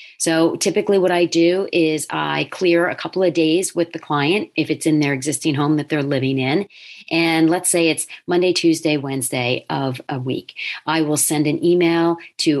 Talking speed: 195 wpm